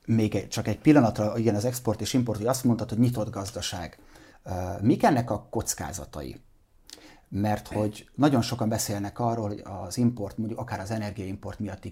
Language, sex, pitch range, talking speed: Hungarian, male, 100-110 Hz, 165 wpm